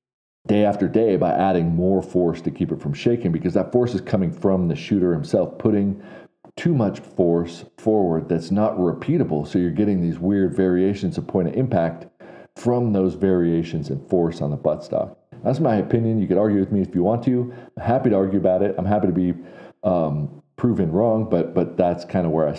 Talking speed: 215 wpm